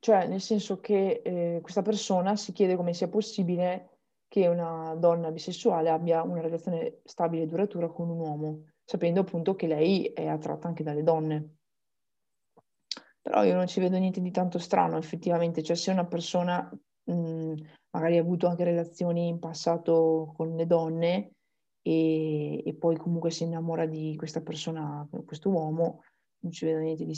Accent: native